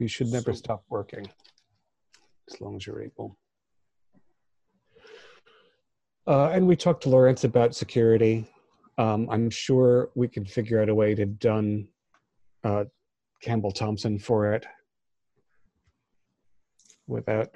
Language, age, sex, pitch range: English, 40-59, male, 100-120 Hz